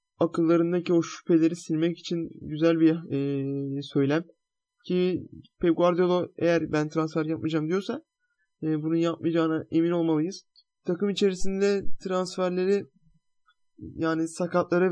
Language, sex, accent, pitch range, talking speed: Turkish, male, native, 160-190 Hz, 110 wpm